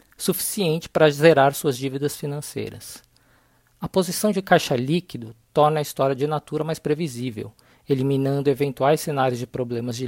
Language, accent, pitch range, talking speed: Portuguese, Brazilian, 135-160 Hz, 145 wpm